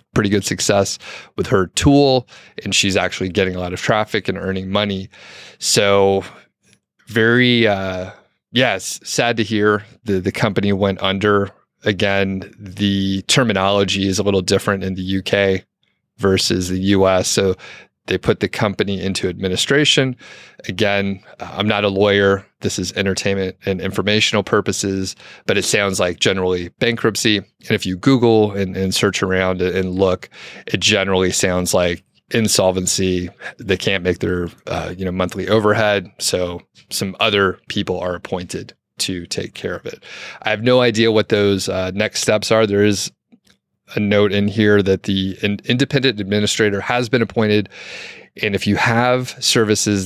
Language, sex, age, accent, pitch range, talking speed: English, male, 30-49, American, 95-105 Hz, 155 wpm